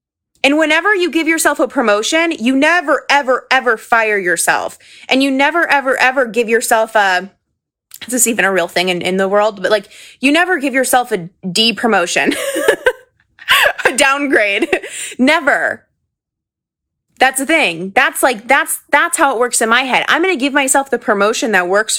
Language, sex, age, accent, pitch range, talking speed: English, female, 20-39, American, 220-285 Hz, 175 wpm